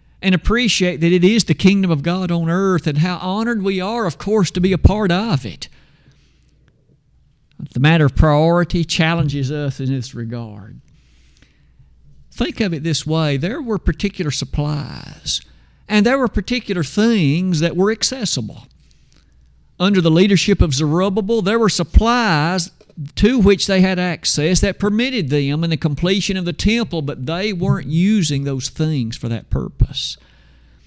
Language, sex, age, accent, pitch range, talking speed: English, male, 50-69, American, 125-185 Hz, 155 wpm